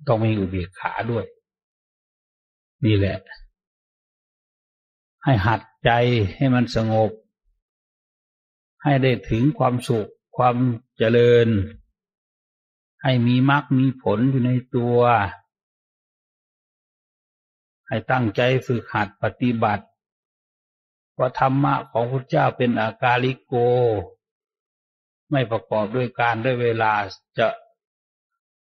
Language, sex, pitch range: English, male, 105-125 Hz